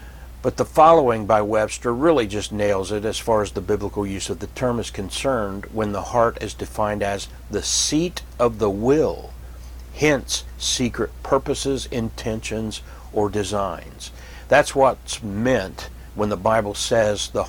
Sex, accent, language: male, American, English